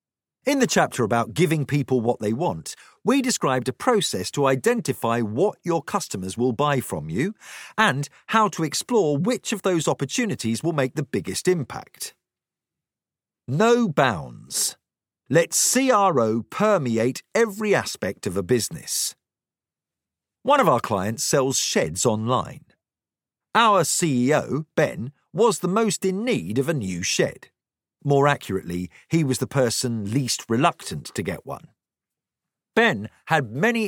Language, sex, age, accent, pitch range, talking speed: English, male, 50-69, British, 125-200 Hz, 140 wpm